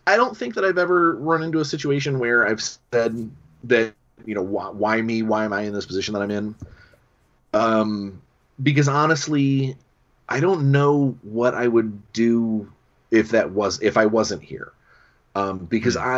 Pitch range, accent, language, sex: 115-150 Hz, American, English, male